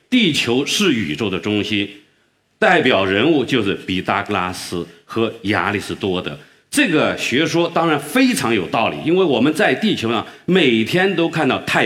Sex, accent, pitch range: male, native, 100-150 Hz